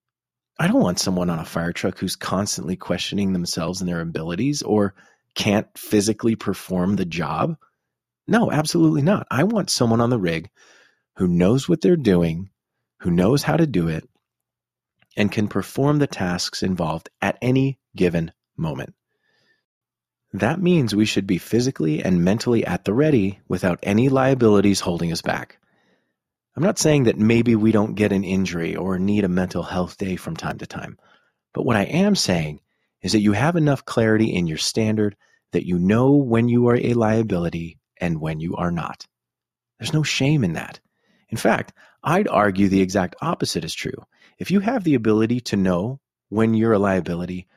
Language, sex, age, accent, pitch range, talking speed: English, male, 30-49, American, 90-125 Hz, 175 wpm